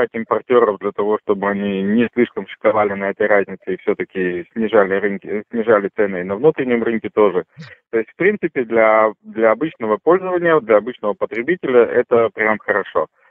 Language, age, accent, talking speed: Russian, 20-39, native, 155 wpm